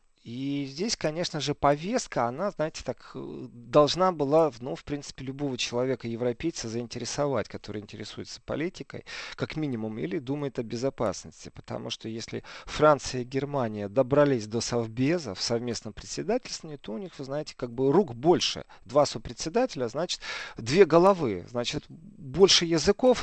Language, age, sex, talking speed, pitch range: Russian, 40-59, male, 140 wpm, 120-160 Hz